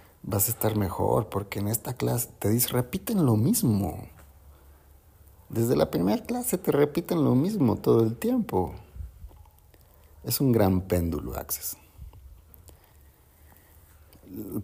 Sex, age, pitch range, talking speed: male, 50-69, 85-105 Hz, 120 wpm